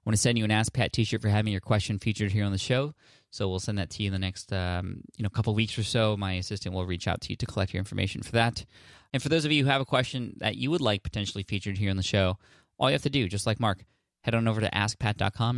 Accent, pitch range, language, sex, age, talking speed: American, 95-120 Hz, English, male, 20-39, 305 wpm